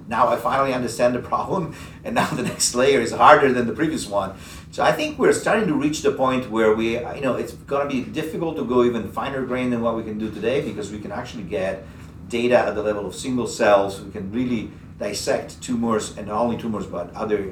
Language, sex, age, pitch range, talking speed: English, male, 50-69, 100-120 Hz, 235 wpm